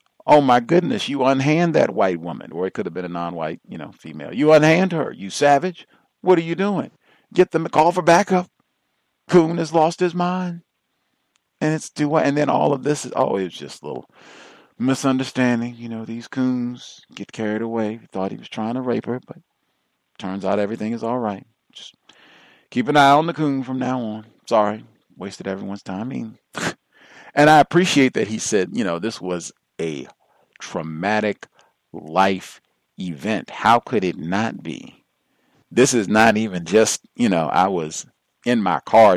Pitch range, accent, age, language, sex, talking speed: 105-155 Hz, American, 40-59, English, male, 185 wpm